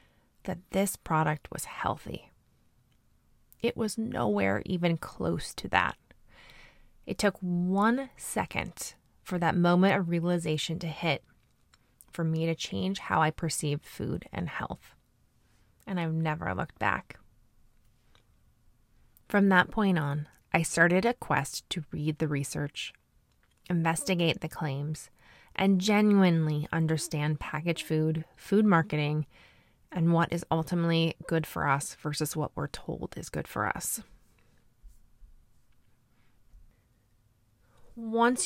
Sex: female